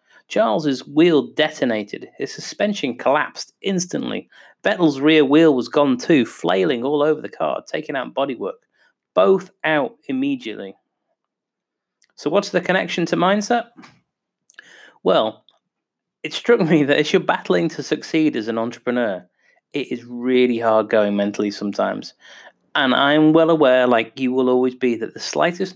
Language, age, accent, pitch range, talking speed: English, 30-49, British, 125-175 Hz, 145 wpm